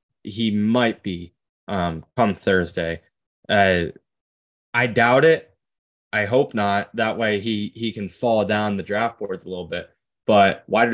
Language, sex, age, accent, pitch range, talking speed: English, male, 20-39, American, 100-120 Hz, 155 wpm